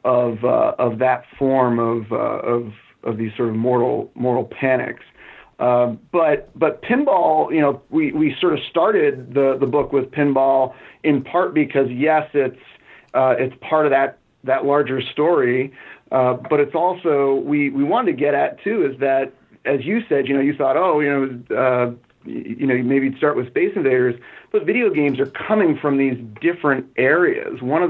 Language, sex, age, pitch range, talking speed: English, male, 40-59, 125-140 Hz, 185 wpm